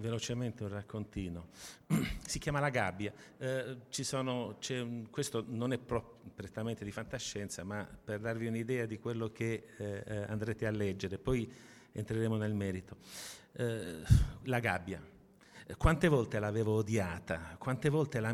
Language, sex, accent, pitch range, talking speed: Italian, male, native, 105-120 Hz, 145 wpm